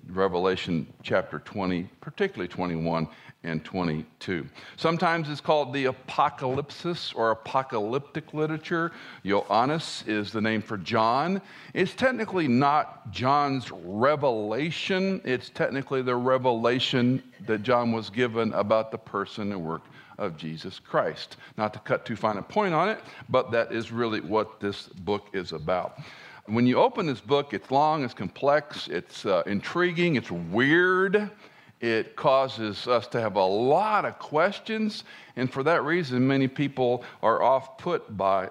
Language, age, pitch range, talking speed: English, 50-69, 105-145 Hz, 145 wpm